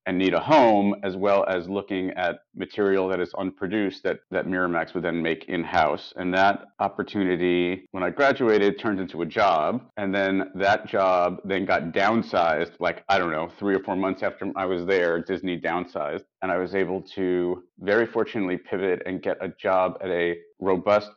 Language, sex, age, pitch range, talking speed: English, male, 40-59, 90-100 Hz, 185 wpm